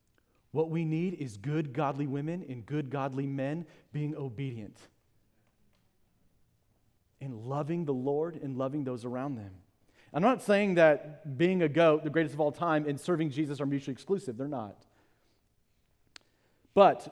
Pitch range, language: 140-195 Hz, English